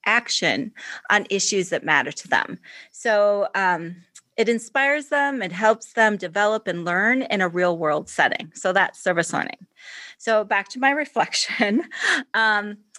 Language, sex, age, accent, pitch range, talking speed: English, female, 30-49, American, 175-245 Hz, 150 wpm